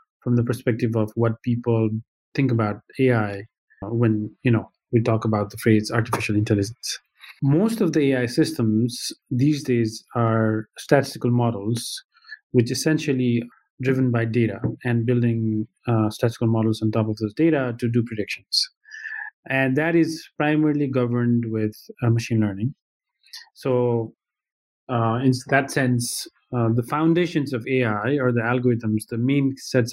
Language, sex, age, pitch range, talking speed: English, male, 30-49, 115-140 Hz, 145 wpm